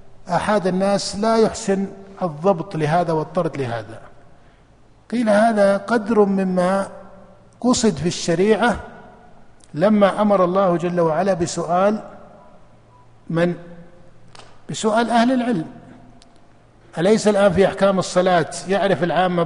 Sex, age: male, 50-69